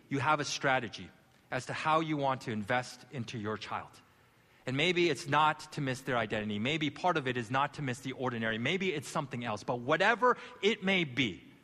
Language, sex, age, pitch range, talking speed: English, male, 30-49, 115-150 Hz, 210 wpm